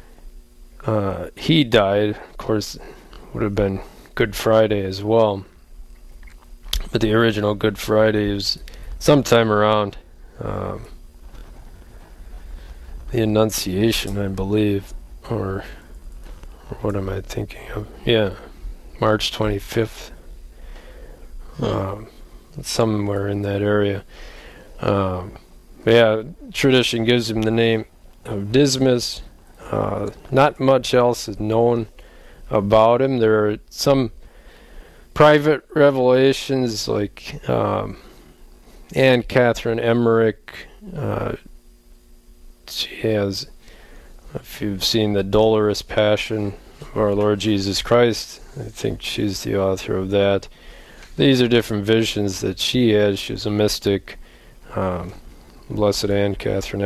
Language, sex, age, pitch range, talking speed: English, male, 20-39, 95-115 Hz, 110 wpm